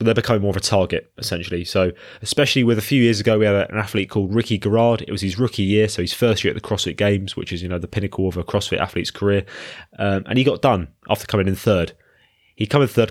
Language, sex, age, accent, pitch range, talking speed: English, male, 20-39, British, 95-115 Hz, 260 wpm